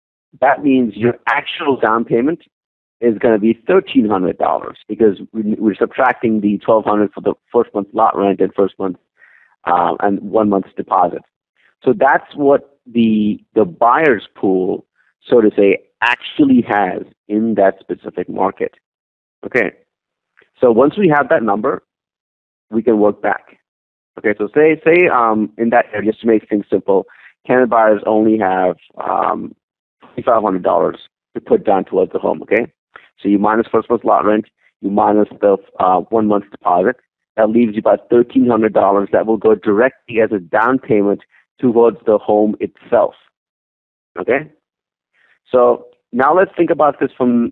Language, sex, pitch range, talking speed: English, male, 105-125 Hz, 155 wpm